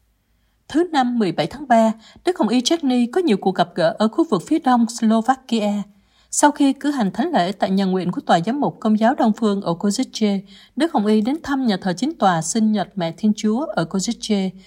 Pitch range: 190-245 Hz